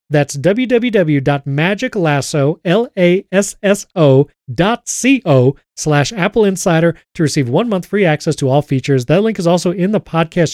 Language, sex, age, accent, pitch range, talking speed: English, male, 40-59, American, 150-195 Hz, 120 wpm